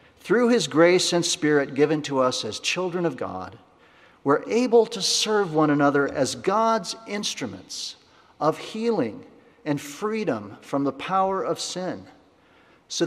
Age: 50-69